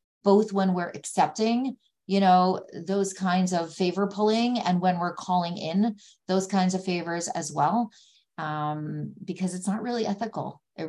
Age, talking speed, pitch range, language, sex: 30-49, 160 wpm, 155-190 Hz, English, female